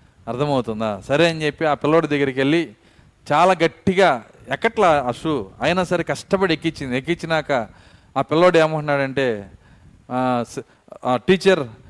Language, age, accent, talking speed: Telugu, 40-59, native, 105 wpm